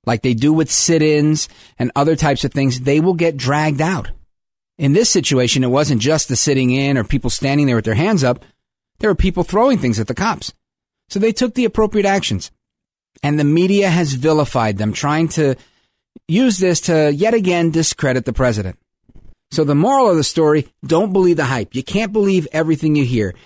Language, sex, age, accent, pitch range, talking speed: English, male, 40-59, American, 125-185 Hz, 195 wpm